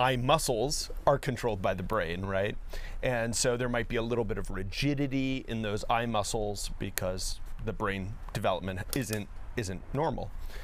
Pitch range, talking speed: 100-140 Hz, 165 wpm